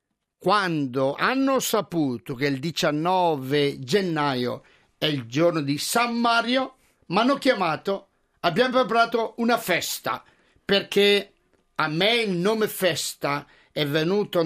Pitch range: 155-215 Hz